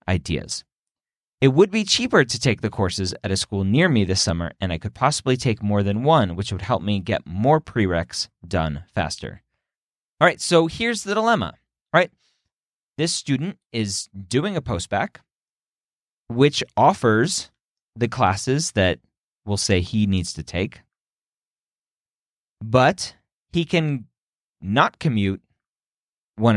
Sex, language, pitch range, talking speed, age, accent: male, English, 95-150 Hz, 140 wpm, 30-49, American